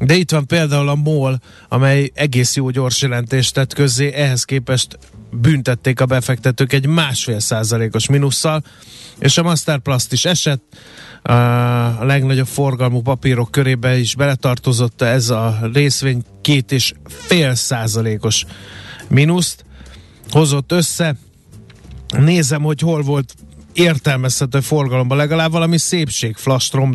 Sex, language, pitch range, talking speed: male, Hungarian, 120-150 Hz, 120 wpm